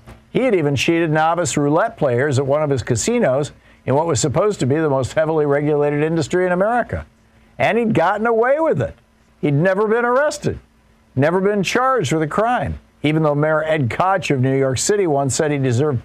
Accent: American